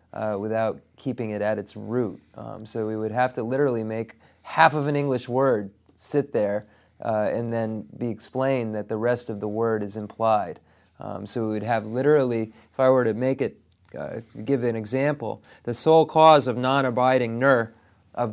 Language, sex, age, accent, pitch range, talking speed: English, male, 30-49, American, 110-130 Hz, 190 wpm